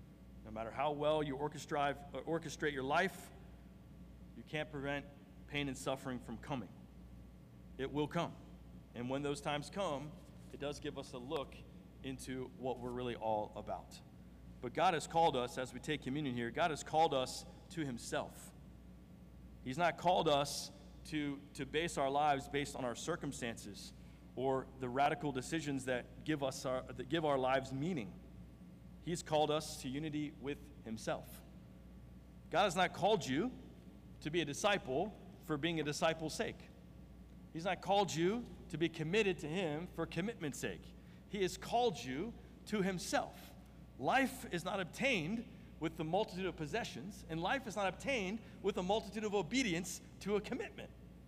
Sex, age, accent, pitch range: male, 40-59, American, 120-170 Hz